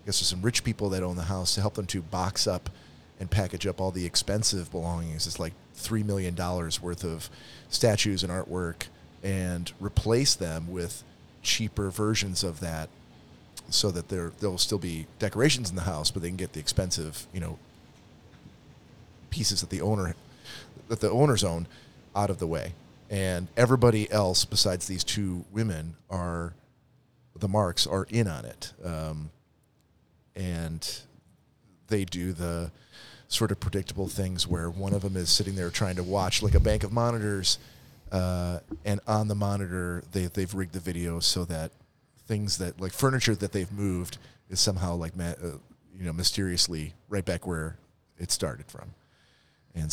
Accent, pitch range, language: American, 90-105 Hz, English